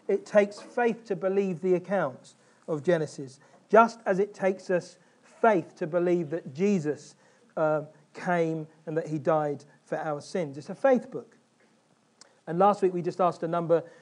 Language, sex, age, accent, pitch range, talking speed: English, male, 40-59, British, 160-195 Hz, 170 wpm